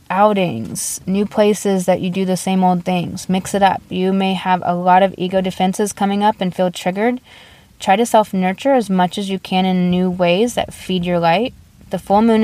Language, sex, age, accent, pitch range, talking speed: English, female, 20-39, American, 180-195 Hz, 210 wpm